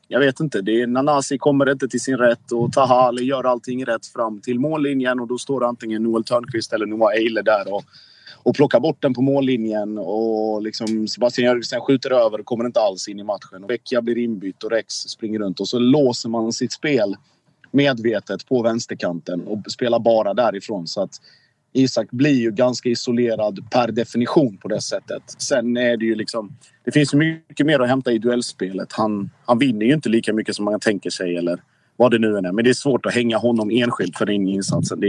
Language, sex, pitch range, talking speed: Swedish, male, 110-125 Hz, 215 wpm